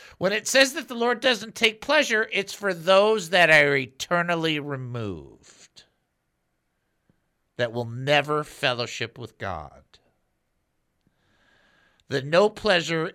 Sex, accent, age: male, American, 50-69